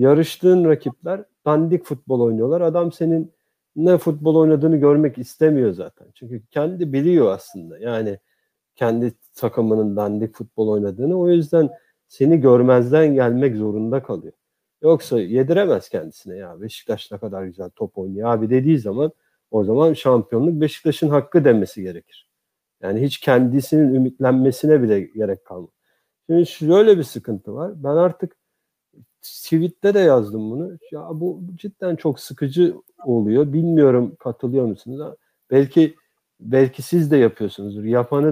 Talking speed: 130 wpm